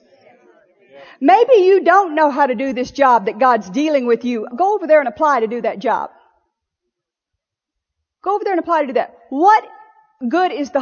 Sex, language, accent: female, English, American